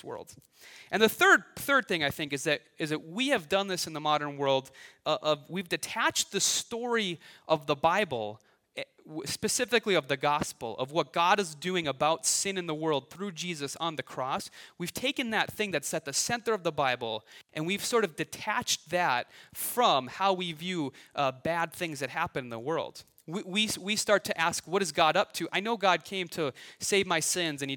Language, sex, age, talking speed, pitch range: English, male, 30-49, 210 wpm, 145-200 Hz